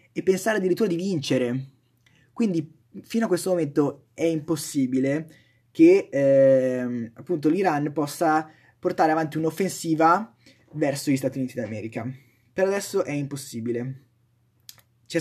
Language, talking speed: Italian, 120 wpm